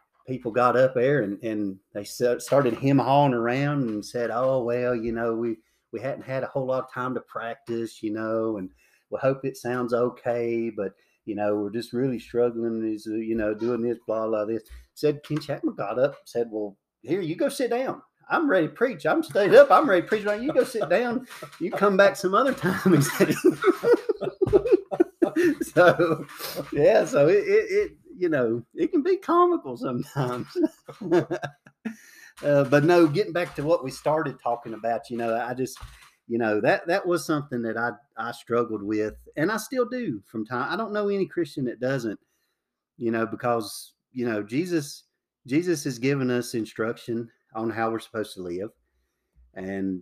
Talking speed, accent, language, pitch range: 185 wpm, American, English, 110-170 Hz